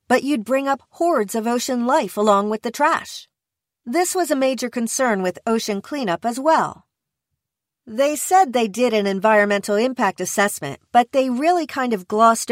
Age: 40-59